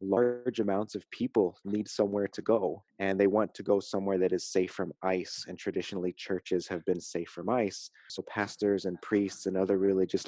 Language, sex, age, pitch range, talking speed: English, male, 30-49, 95-110 Hz, 200 wpm